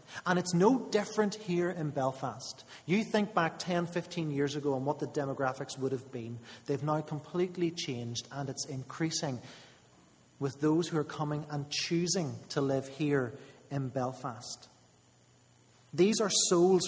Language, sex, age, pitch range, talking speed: English, male, 30-49, 130-160 Hz, 155 wpm